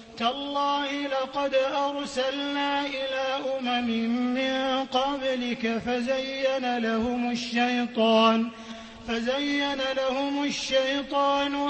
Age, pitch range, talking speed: 30-49, 235-265 Hz, 65 wpm